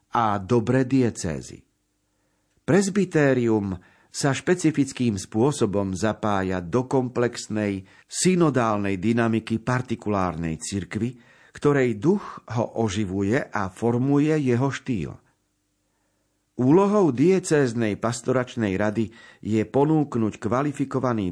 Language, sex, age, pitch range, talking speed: Slovak, male, 50-69, 100-130 Hz, 80 wpm